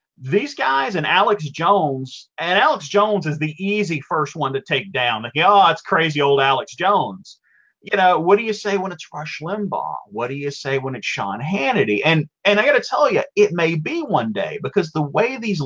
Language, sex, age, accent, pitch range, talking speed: English, male, 40-59, American, 140-205 Hz, 220 wpm